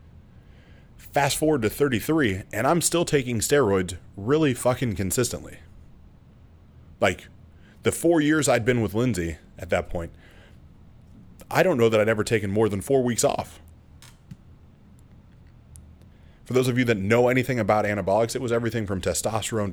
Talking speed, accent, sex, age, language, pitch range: 150 wpm, American, male, 30-49, English, 90-120 Hz